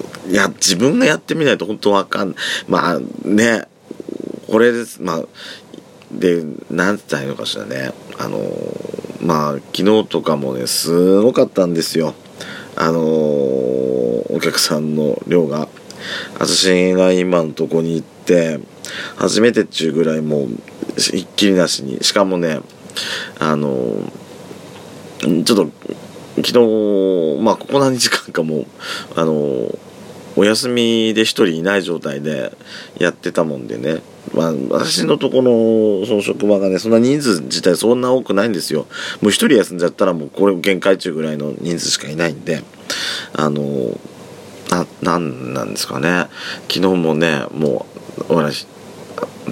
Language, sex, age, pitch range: Japanese, male, 40-59, 75-105 Hz